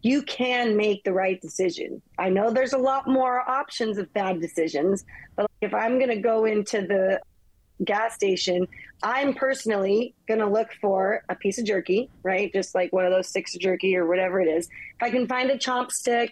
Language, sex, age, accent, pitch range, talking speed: English, female, 30-49, American, 185-230 Hz, 200 wpm